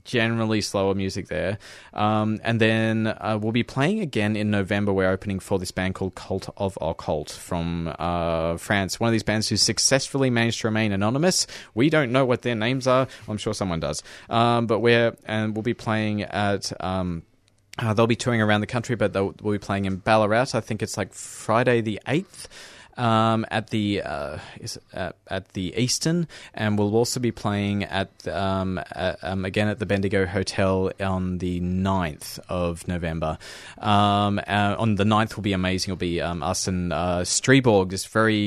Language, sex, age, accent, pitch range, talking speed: English, male, 20-39, Australian, 95-110 Hz, 185 wpm